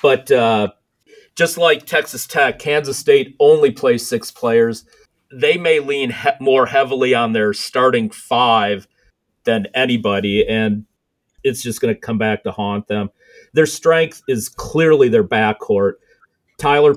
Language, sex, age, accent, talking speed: English, male, 40-59, American, 140 wpm